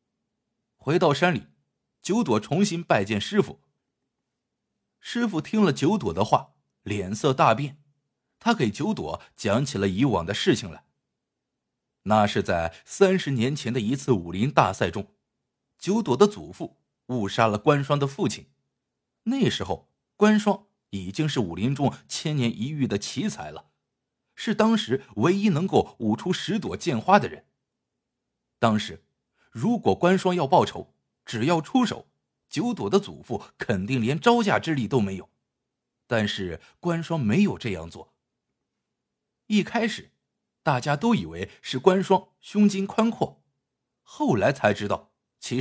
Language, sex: Chinese, male